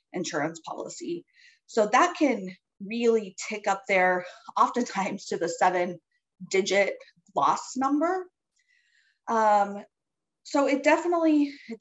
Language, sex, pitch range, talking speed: English, female, 180-285 Hz, 105 wpm